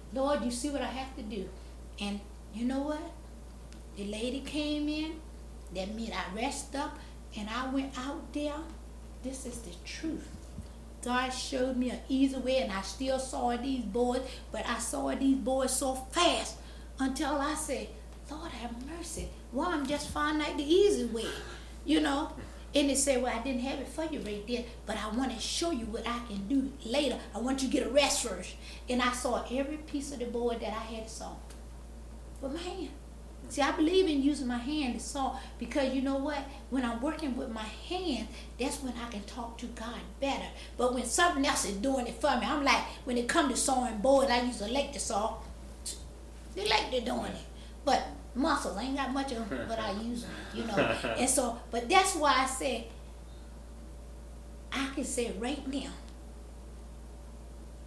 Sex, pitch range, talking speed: female, 205-275 Hz, 200 wpm